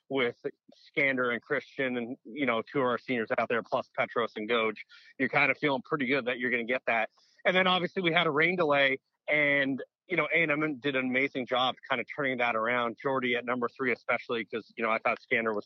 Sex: male